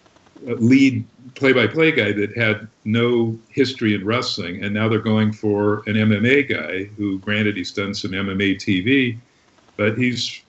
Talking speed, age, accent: 150 wpm, 50-69, American